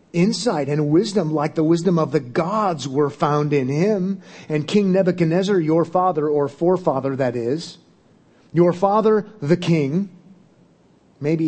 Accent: American